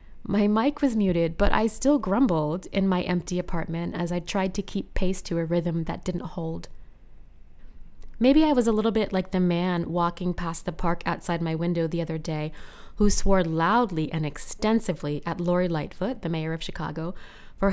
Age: 20-39